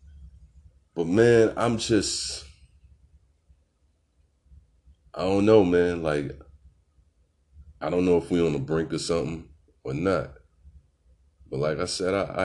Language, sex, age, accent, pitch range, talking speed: English, male, 30-49, American, 70-80 Hz, 125 wpm